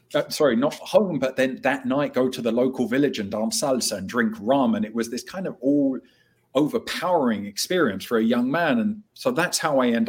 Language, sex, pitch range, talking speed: English, male, 110-135 Hz, 225 wpm